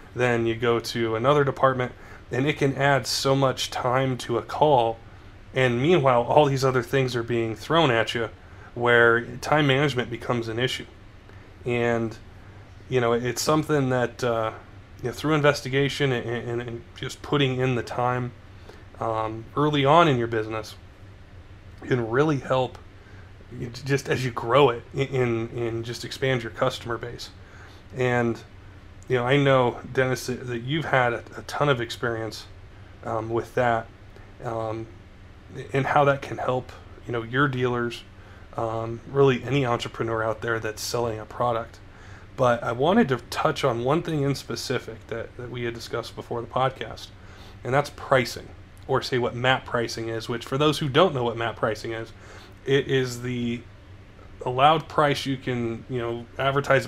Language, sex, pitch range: English, male, 105-130 Hz